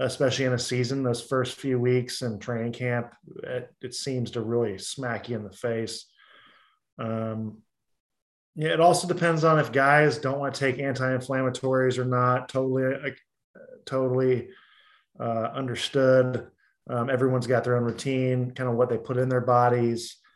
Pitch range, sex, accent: 115-135 Hz, male, American